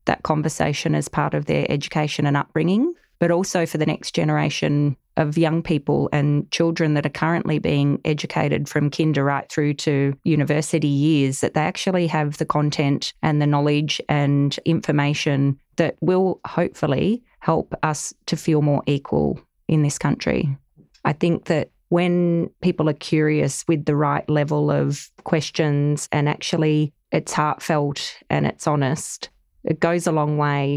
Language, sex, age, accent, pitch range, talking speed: English, female, 20-39, Australian, 145-160 Hz, 155 wpm